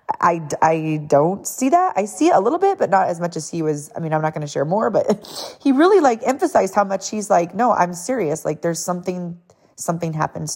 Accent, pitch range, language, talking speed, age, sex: American, 155-190 Hz, English, 245 wpm, 30-49, female